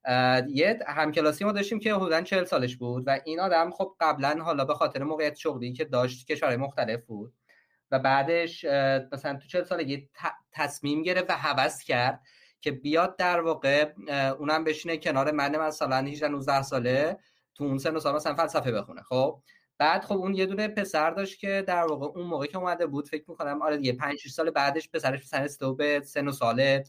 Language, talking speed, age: Persian, 185 wpm, 20-39